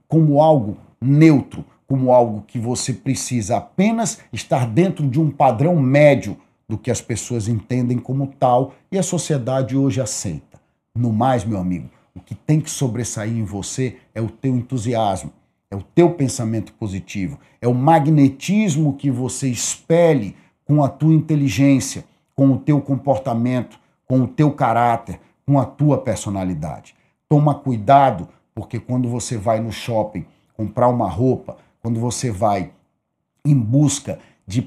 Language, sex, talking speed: Portuguese, male, 150 wpm